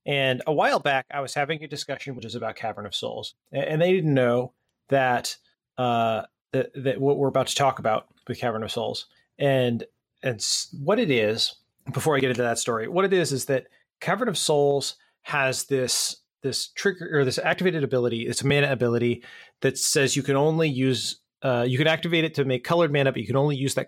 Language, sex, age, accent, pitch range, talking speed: English, male, 30-49, American, 125-150 Hz, 215 wpm